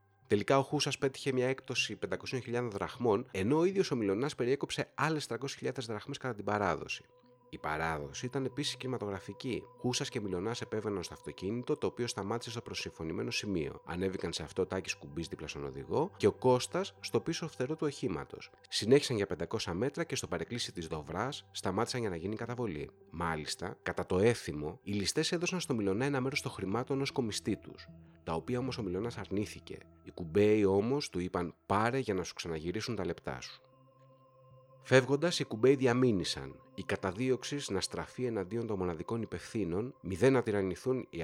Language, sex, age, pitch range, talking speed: Greek, male, 30-49, 95-130 Hz, 175 wpm